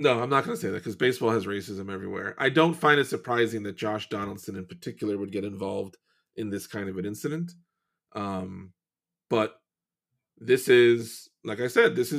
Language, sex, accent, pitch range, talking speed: English, male, American, 105-130 Hz, 185 wpm